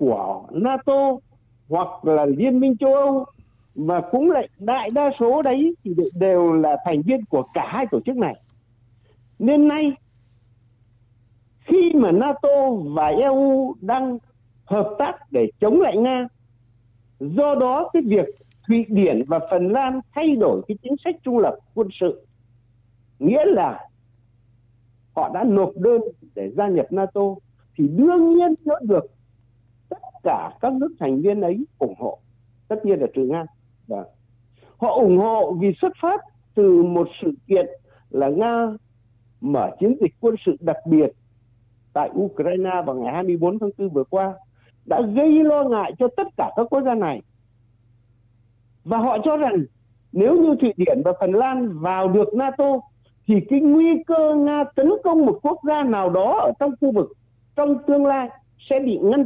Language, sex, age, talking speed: Vietnamese, male, 60-79, 165 wpm